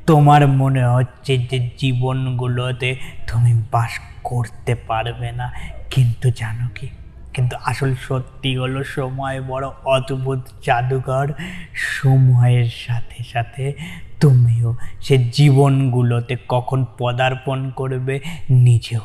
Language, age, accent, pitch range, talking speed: Bengali, 20-39, native, 115-130 Hz, 100 wpm